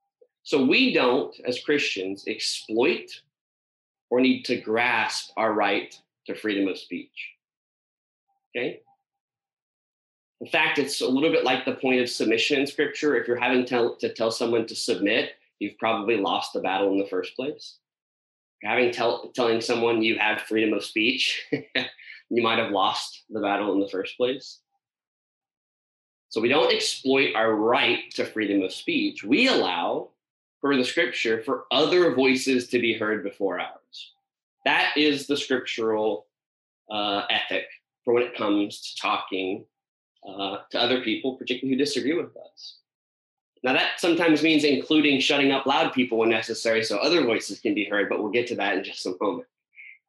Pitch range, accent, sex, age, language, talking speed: 110-170 Hz, American, male, 30-49, English, 160 wpm